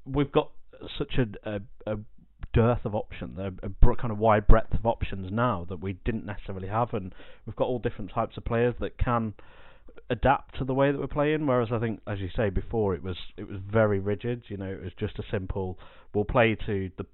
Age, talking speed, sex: 30-49, 230 wpm, male